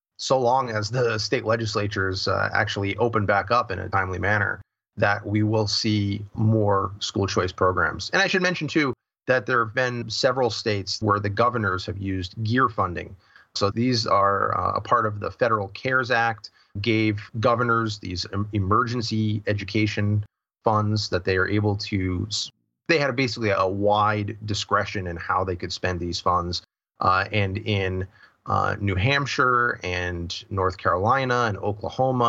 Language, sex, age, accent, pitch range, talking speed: English, male, 30-49, American, 100-115 Hz, 160 wpm